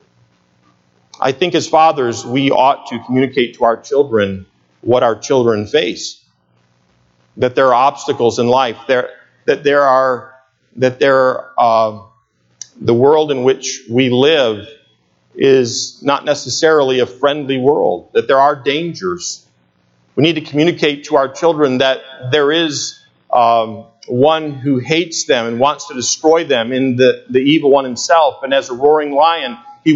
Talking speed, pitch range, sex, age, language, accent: 150 wpm, 120-165 Hz, male, 50-69, English, American